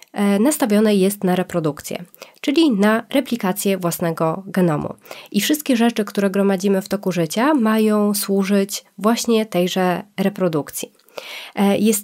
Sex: female